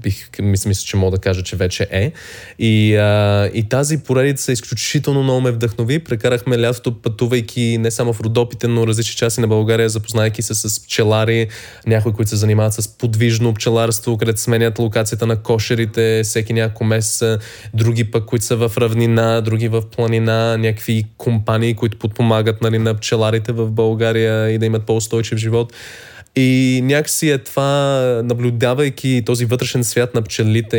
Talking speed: 160 wpm